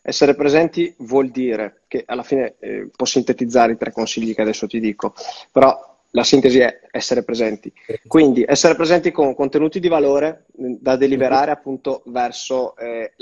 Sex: male